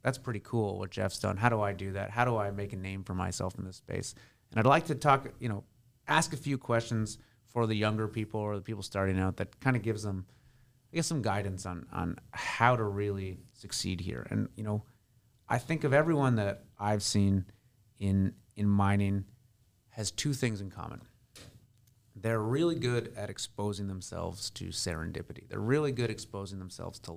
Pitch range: 100-125 Hz